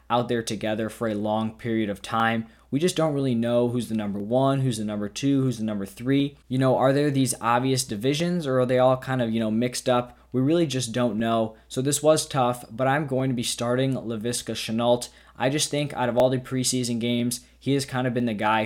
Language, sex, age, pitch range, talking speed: English, male, 20-39, 110-125 Hz, 245 wpm